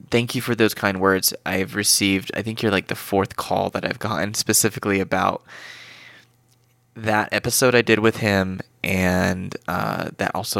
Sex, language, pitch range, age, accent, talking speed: male, English, 95-110 Hz, 20-39, American, 170 wpm